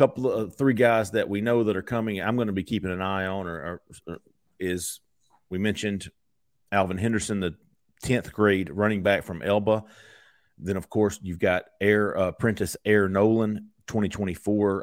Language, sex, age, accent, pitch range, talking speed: English, male, 40-59, American, 95-115 Hz, 180 wpm